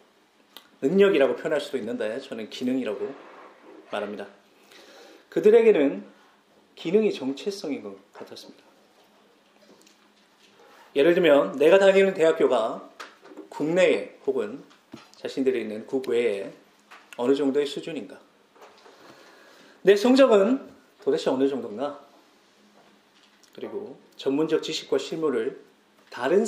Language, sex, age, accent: Korean, male, 30-49, native